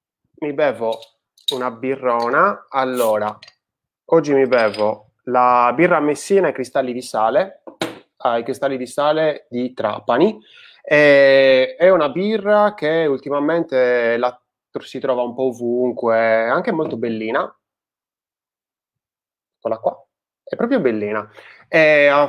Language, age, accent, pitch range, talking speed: Italian, 20-39, native, 115-145 Hz, 115 wpm